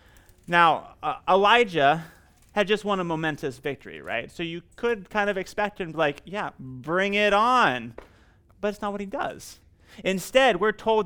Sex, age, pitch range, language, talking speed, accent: male, 30-49, 130-200 Hz, English, 180 wpm, American